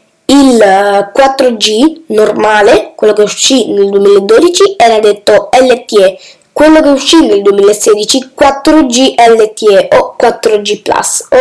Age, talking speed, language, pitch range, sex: 10-29, 115 wpm, Italian, 220-310 Hz, female